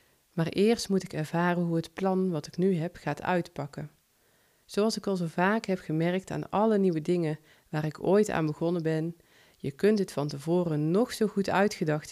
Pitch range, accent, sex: 155-195 Hz, Dutch, female